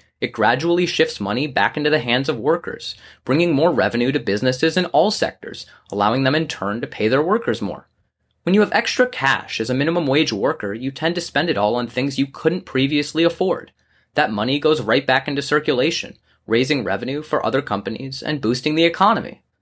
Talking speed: 200 wpm